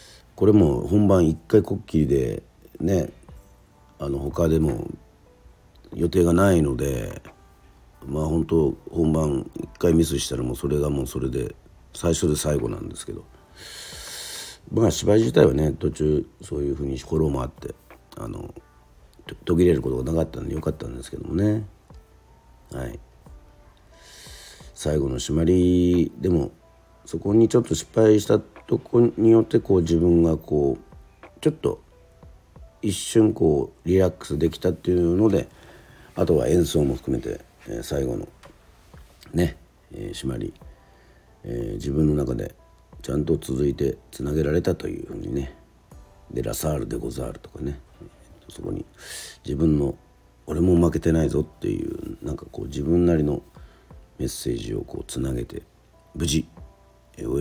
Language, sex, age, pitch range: Japanese, male, 50-69, 70-90 Hz